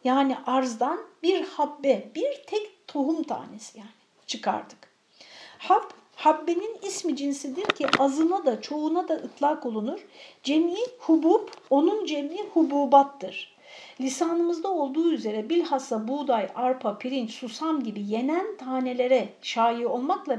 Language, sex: Turkish, female